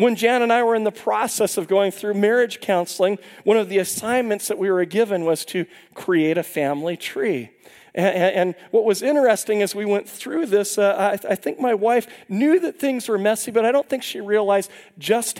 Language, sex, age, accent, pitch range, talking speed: English, male, 40-59, American, 160-225 Hz, 215 wpm